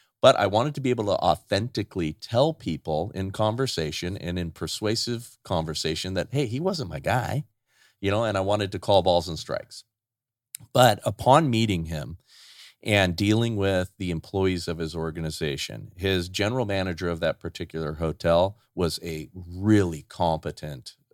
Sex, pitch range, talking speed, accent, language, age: male, 85-115 Hz, 155 wpm, American, English, 40-59